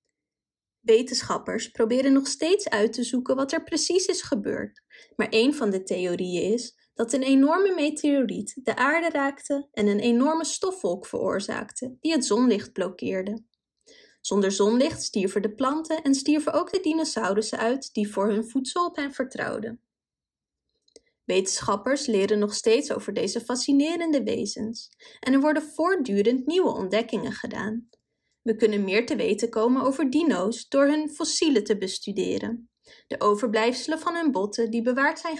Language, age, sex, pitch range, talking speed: Dutch, 20-39, female, 220-305 Hz, 150 wpm